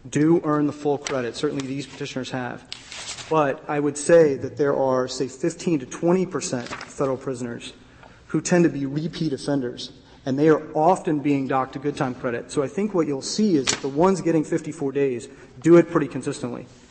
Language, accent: English, American